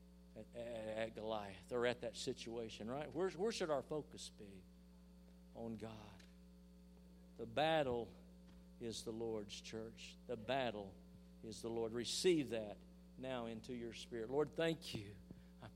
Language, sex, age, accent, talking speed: English, male, 50-69, American, 145 wpm